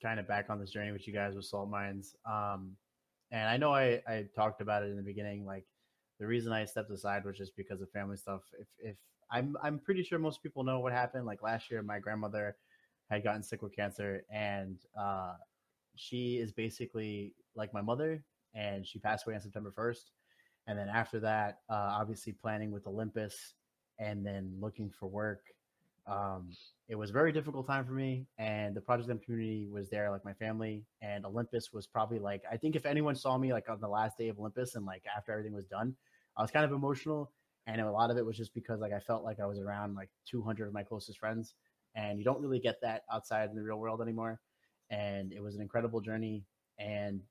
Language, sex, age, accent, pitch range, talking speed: English, male, 30-49, American, 105-115 Hz, 220 wpm